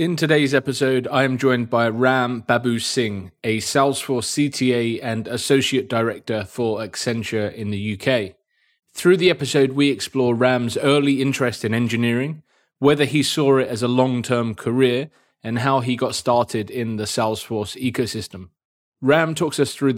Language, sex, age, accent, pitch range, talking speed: English, male, 20-39, British, 115-140 Hz, 160 wpm